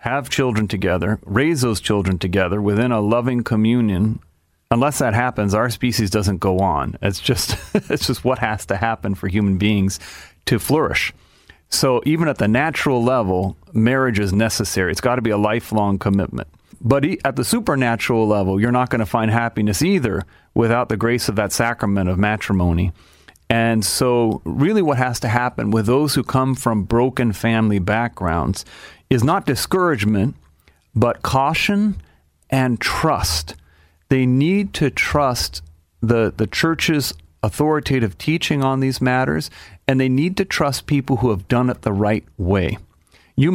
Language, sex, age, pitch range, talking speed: English, male, 40-59, 100-125 Hz, 155 wpm